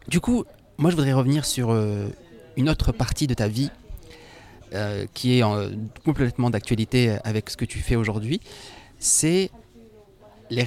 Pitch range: 110-145 Hz